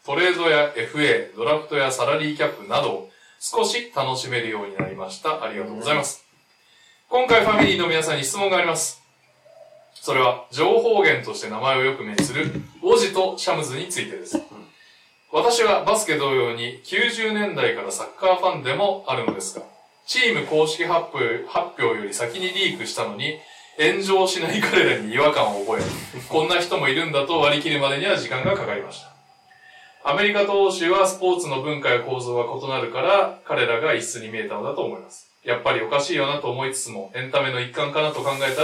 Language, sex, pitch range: Japanese, male, 130-200 Hz